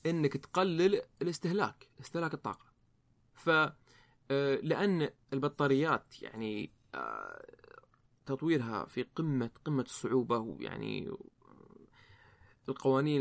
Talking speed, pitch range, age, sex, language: 75 wpm, 120-155 Hz, 20-39, male, Arabic